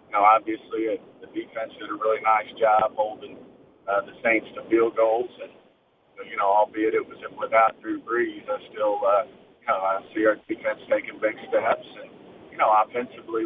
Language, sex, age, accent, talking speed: English, male, 50-69, American, 160 wpm